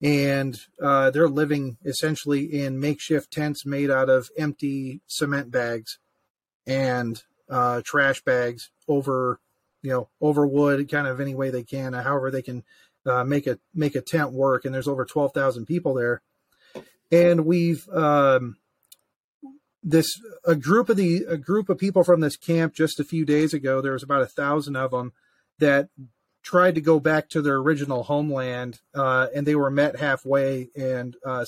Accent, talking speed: American, 170 wpm